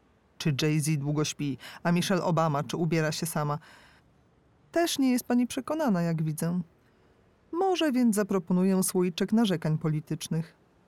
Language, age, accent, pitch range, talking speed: Polish, 40-59, native, 160-225 Hz, 130 wpm